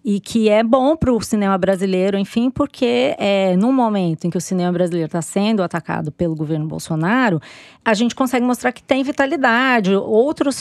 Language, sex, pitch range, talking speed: Portuguese, female, 180-240 Hz, 180 wpm